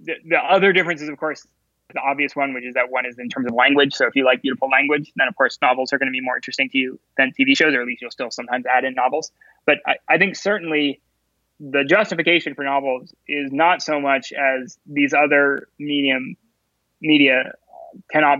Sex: male